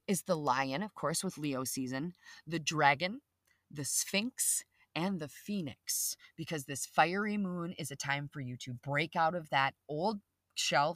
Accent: American